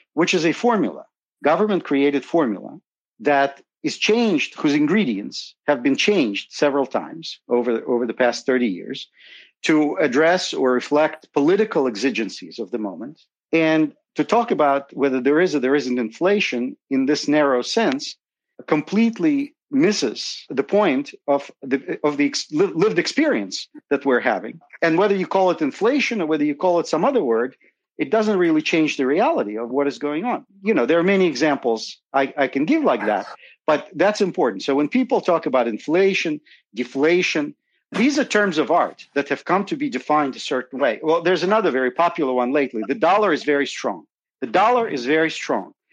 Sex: male